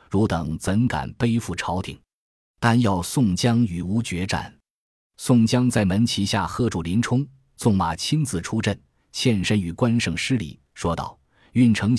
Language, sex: Chinese, male